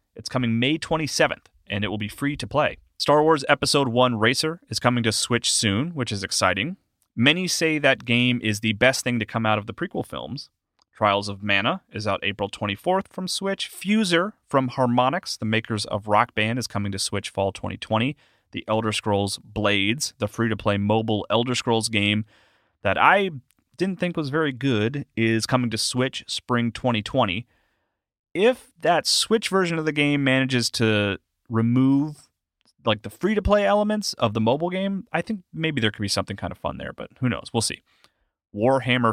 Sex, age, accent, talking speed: male, 30-49, American, 185 wpm